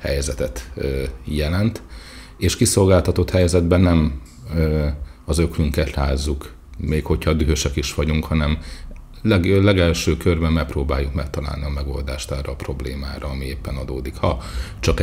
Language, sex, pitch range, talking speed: Hungarian, male, 70-85 Hz, 115 wpm